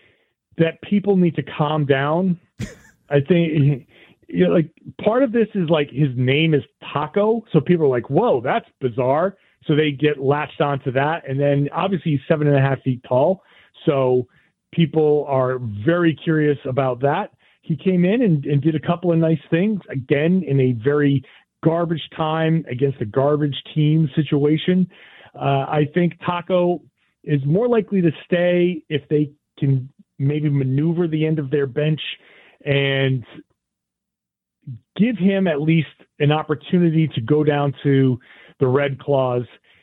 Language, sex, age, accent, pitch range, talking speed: English, male, 40-59, American, 135-170 Hz, 160 wpm